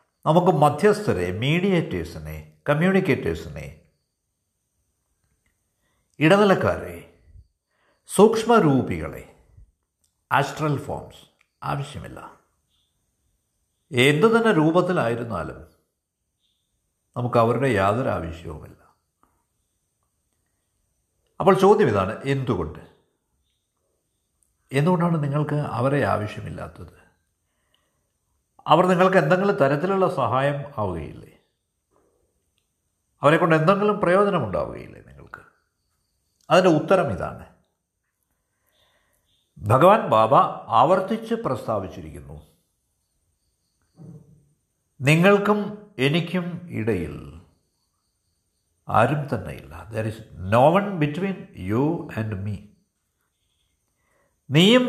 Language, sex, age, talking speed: Malayalam, male, 60-79, 60 wpm